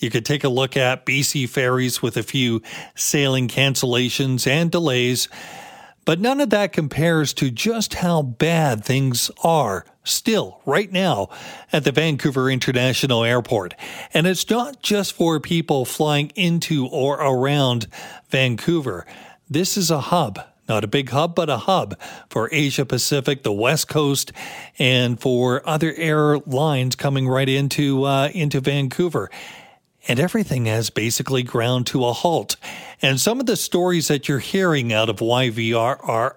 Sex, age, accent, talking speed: male, 40-59, American, 150 wpm